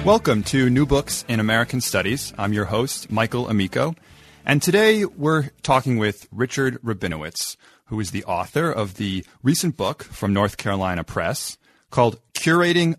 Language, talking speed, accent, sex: English, 150 wpm, American, male